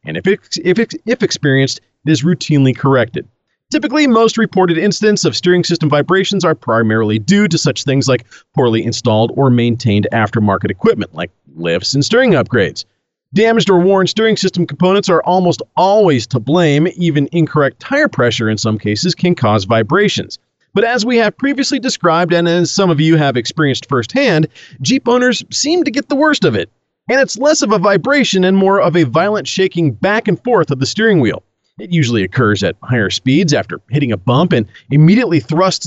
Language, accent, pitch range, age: English, American, 135-200 Hz, 40-59